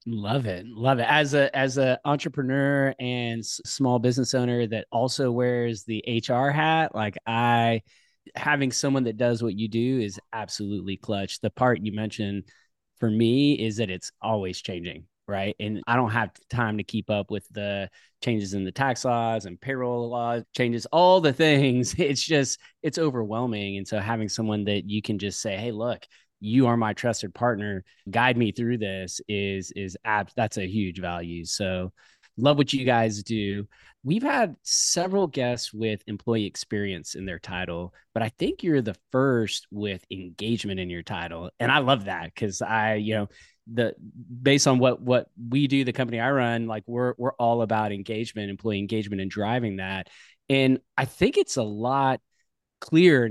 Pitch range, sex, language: 105-125 Hz, male, English